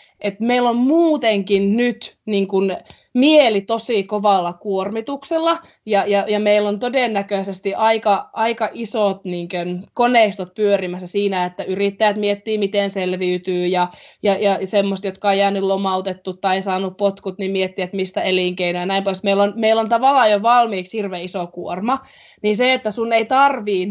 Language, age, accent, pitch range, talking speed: Finnish, 20-39, native, 190-235 Hz, 165 wpm